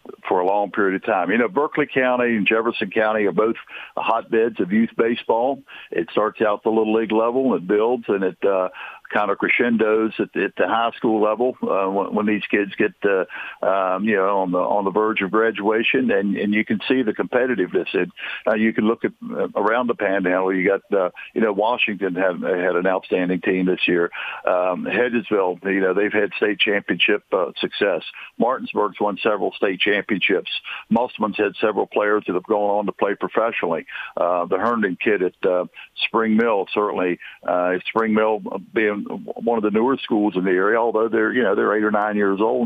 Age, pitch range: 60-79, 95-115 Hz